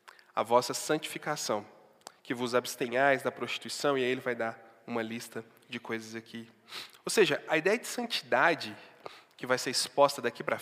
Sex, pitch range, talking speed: male, 115-150 Hz, 170 wpm